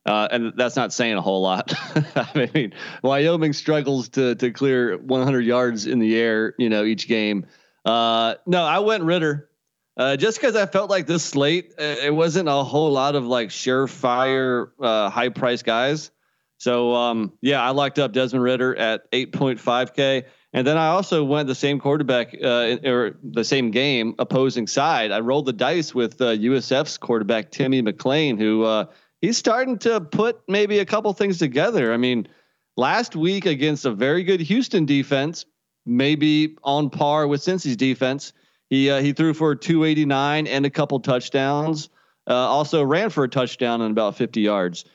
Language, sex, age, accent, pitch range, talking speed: English, male, 30-49, American, 125-160 Hz, 175 wpm